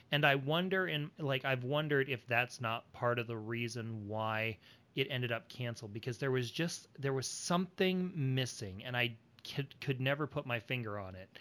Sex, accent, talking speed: male, American, 190 wpm